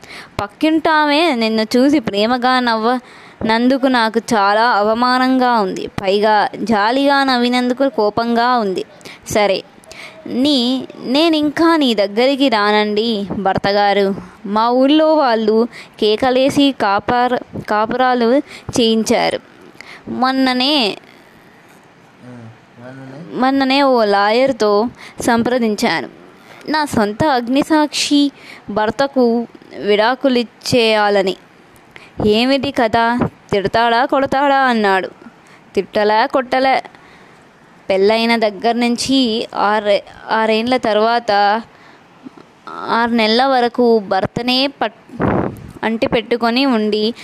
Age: 20-39